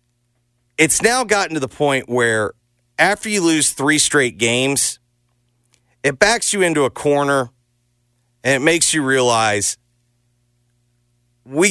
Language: English